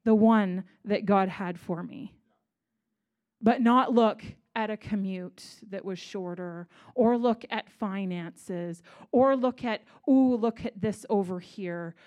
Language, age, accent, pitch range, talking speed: English, 30-49, American, 195-250 Hz, 145 wpm